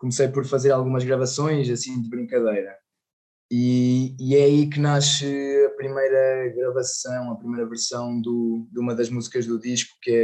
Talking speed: 170 wpm